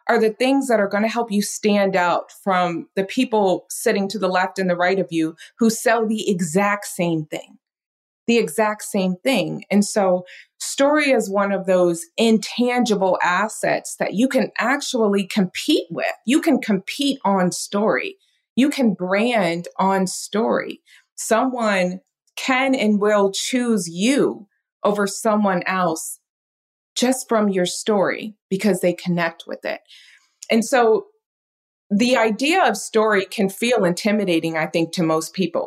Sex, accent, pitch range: female, American, 180-230 Hz